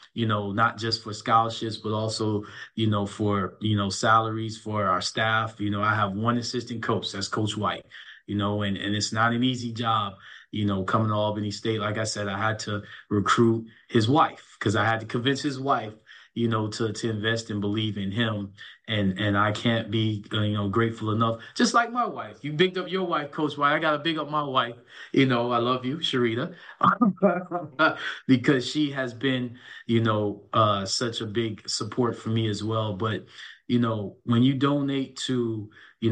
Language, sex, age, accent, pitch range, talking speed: English, male, 20-39, American, 105-120 Hz, 205 wpm